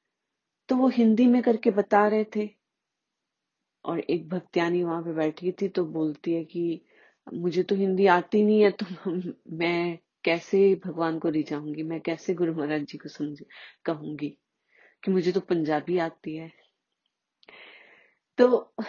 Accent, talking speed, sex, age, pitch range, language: native, 145 wpm, female, 30-49, 160-215 Hz, Hindi